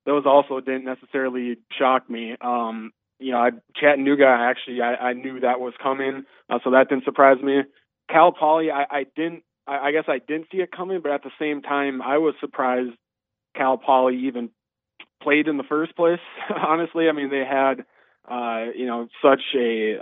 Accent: American